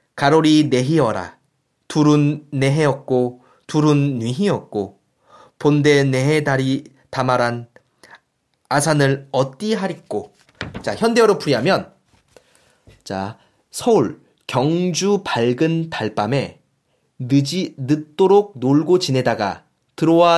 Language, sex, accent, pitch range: Korean, male, native, 135-195 Hz